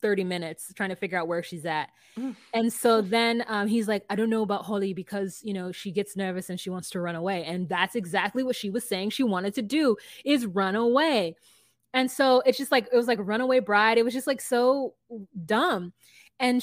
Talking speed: 225 wpm